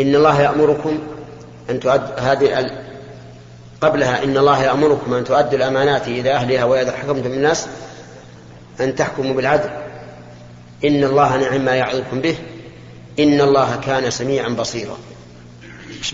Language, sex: Arabic, male